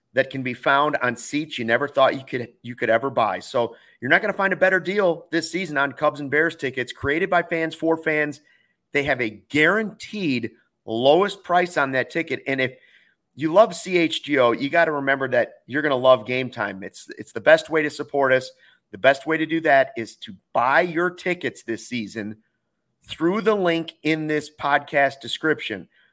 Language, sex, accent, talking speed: English, male, American, 200 wpm